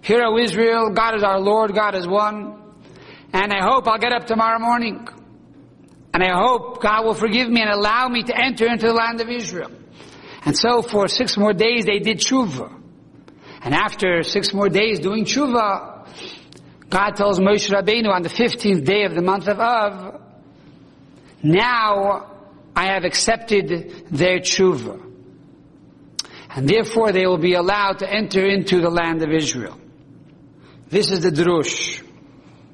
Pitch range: 175-220 Hz